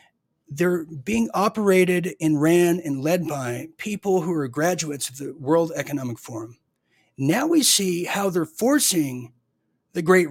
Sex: male